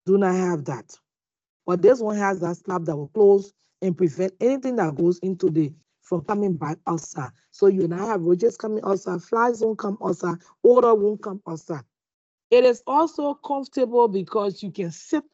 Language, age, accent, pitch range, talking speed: English, 40-59, Nigerian, 180-240 Hz, 190 wpm